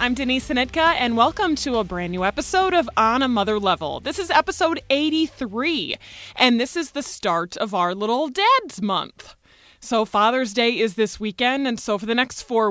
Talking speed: 195 wpm